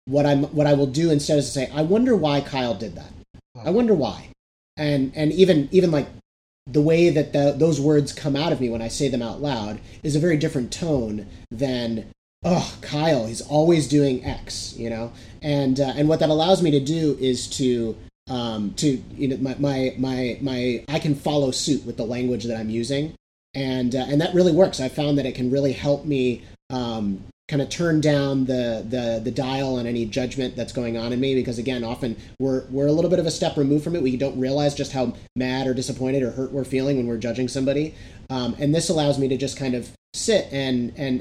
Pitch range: 120-145 Hz